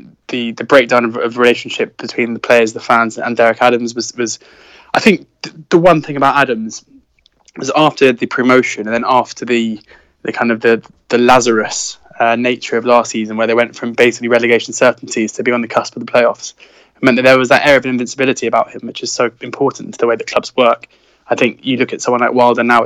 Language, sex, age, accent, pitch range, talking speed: English, male, 20-39, British, 115-125 Hz, 230 wpm